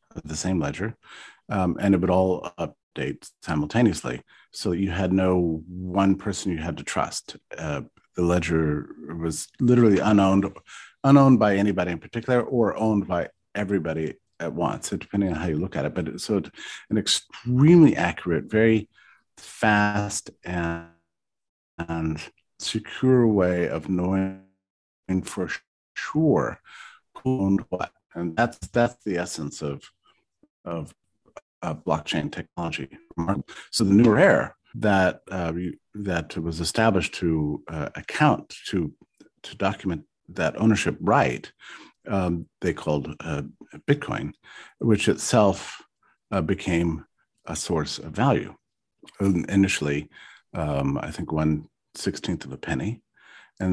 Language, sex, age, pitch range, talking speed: English, male, 50-69, 80-105 Hz, 130 wpm